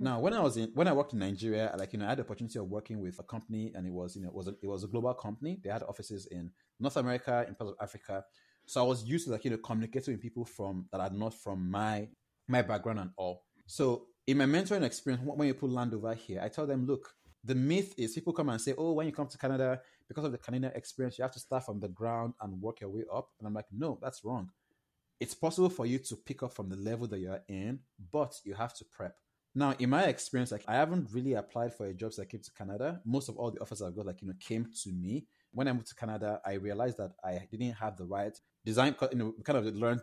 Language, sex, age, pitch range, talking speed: English, male, 30-49, 100-130 Hz, 275 wpm